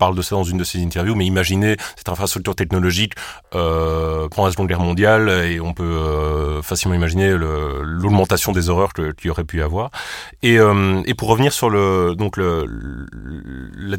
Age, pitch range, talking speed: 20-39, 85-105 Hz, 200 wpm